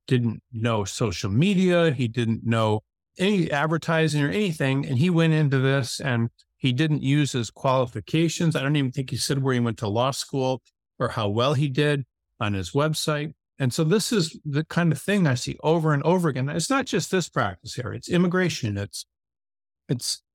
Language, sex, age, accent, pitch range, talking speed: English, male, 50-69, American, 125-165 Hz, 195 wpm